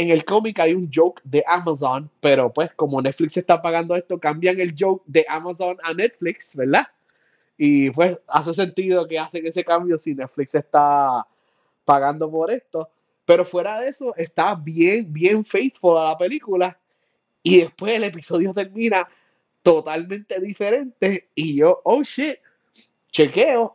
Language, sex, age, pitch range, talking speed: Spanish, male, 30-49, 160-210 Hz, 150 wpm